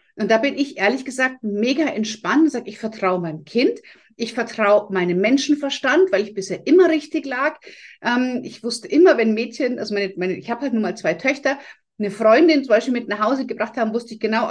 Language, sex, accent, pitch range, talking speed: German, female, German, 200-275 Hz, 215 wpm